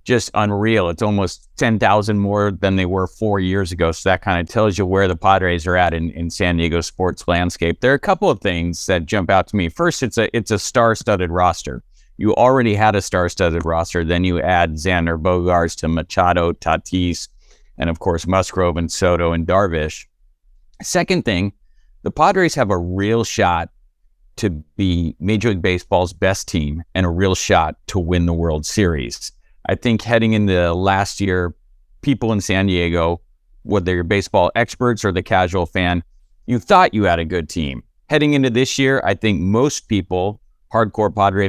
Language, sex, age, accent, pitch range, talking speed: English, male, 50-69, American, 85-110 Hz, 185 wpm